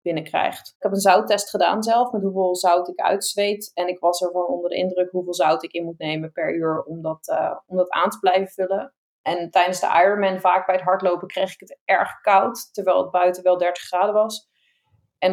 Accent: Dutch